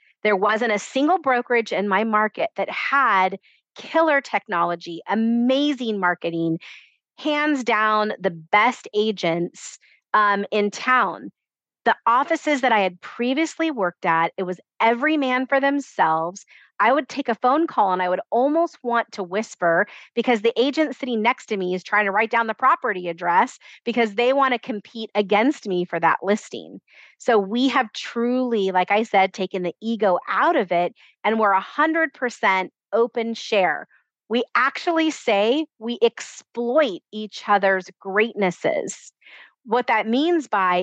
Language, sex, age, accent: English, female, 30-49, American